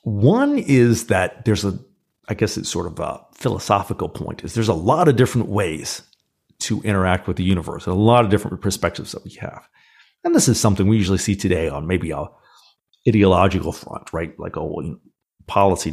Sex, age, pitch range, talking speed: male, 40-59, 95-120 Hz, 190 wpm